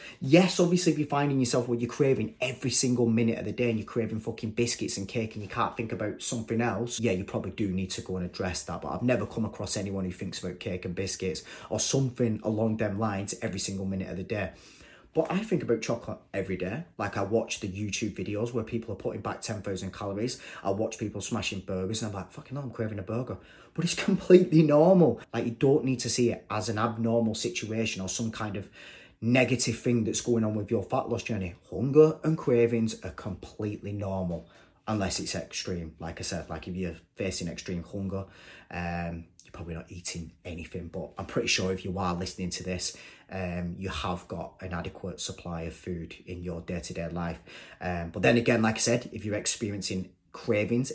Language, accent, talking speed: English, British, 215 wpm